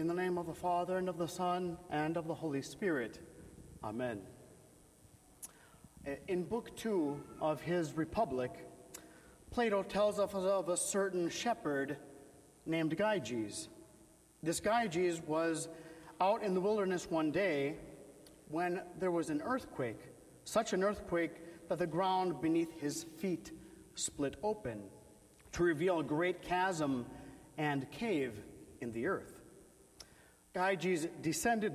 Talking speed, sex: 130 wpm, male